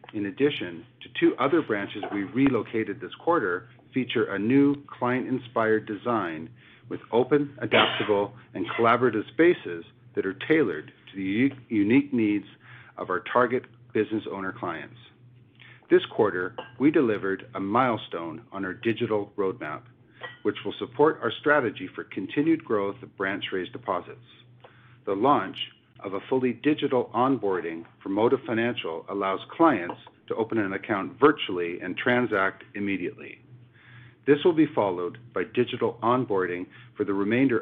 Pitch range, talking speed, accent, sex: 105-130 Hz, 140 wpm, American, male